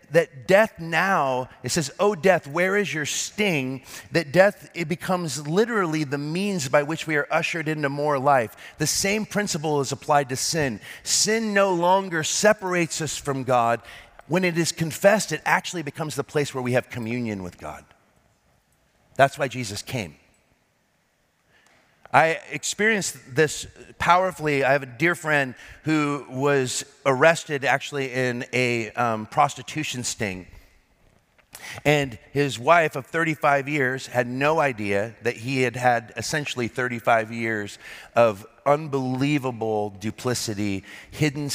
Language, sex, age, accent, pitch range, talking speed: English, male, 30-49, American, 120-155 Hz, 140 wpm